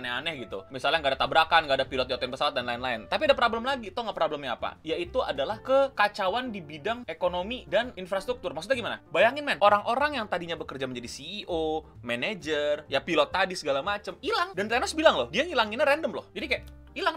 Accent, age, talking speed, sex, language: native, 20-39, 200 wpm, male, Indonesian